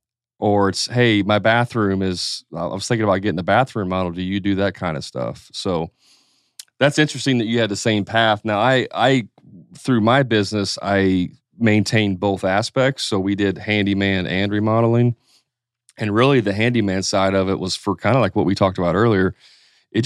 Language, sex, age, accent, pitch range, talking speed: English, male, 30-49, American, 95-115 Hz, 190 wpm